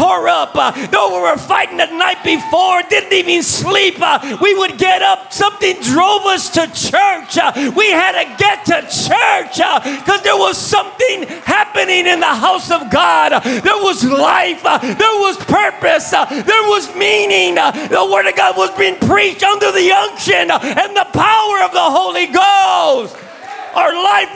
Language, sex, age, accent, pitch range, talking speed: English, male, 40-59, American, 295-385 Hz, 175 wpm